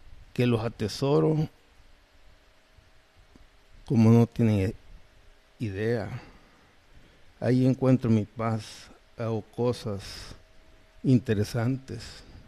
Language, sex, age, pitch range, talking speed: Spanish, male, 60-79, 95-120 Hz, 65 wpm